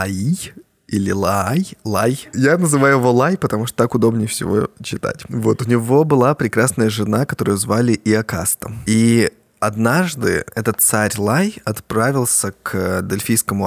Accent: native